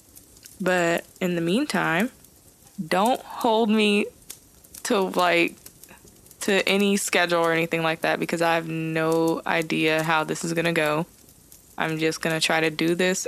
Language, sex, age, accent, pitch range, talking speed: English, female, 20-39, American, 165-195 Hz, 160 wpm